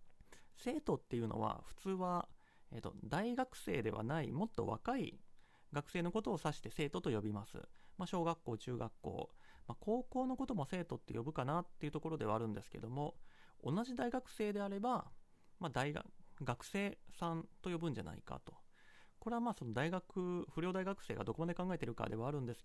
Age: 30-49